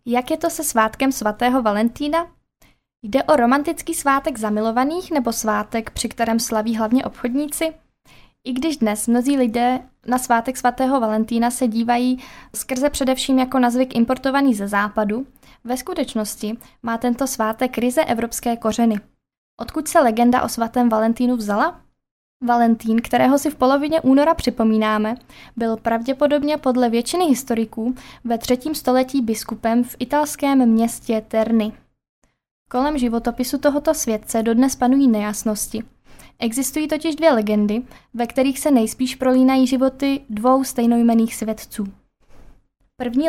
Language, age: Czech, 20-39